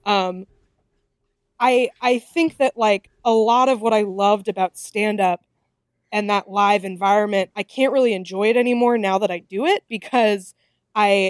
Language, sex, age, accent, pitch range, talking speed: English, female, 20-39, American, 185-240 Hz, 170 wpm